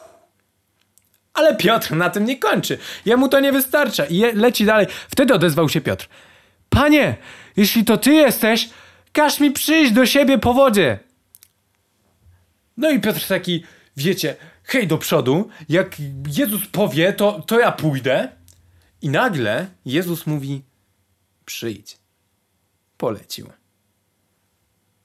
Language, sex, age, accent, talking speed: Polish, male, 20-39, native, 120 wpm